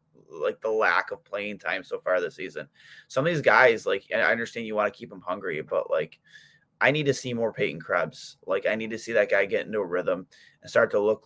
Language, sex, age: English, male, 20-39